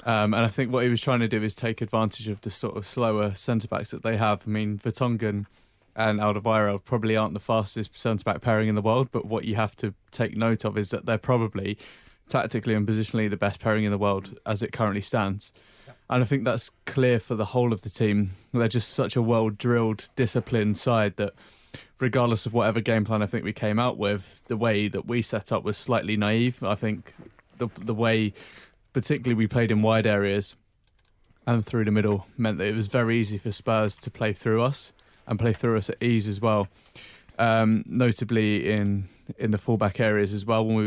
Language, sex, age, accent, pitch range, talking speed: English, male, 20-39, British, 105-115 Hz, 215 wpm